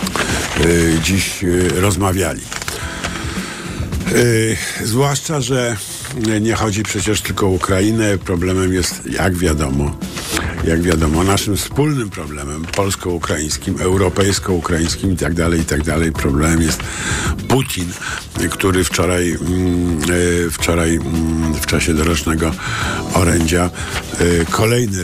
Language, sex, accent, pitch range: Polish, male, native, 85-100 Hz